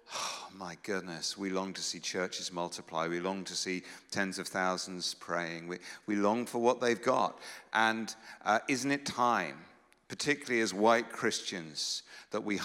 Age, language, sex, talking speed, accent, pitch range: 50-69, English, male, 165 wpm, British, 90-110 Hz